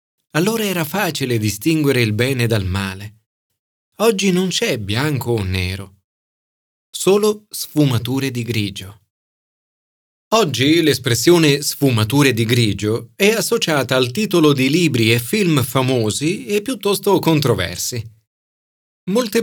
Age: 40-59